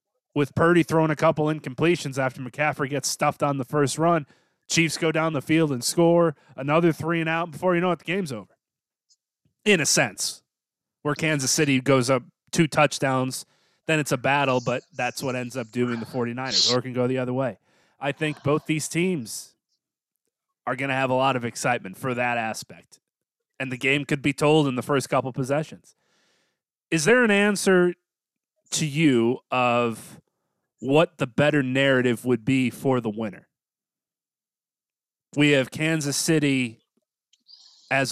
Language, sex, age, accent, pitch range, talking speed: English, male, 30-49, American, 125-155 Hz, 170 wpm